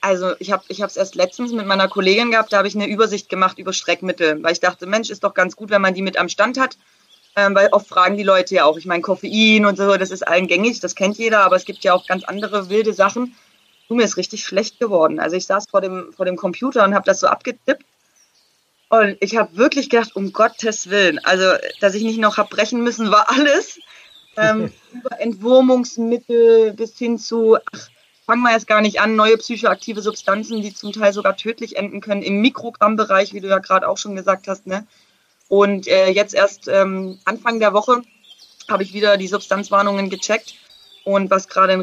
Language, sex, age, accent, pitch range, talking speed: German, female, 30-49, German, 190-225 Hz, 220 wpm